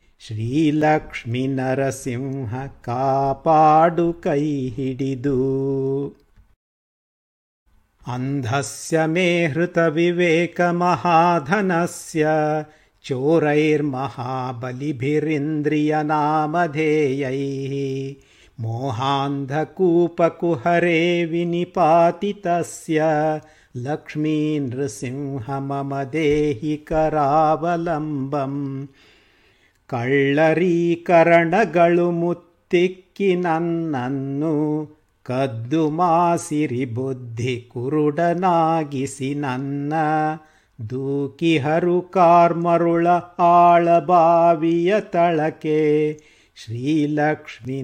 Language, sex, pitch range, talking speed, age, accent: Kannada, male, 135-170 Hz, 30 wpm, 50-69, native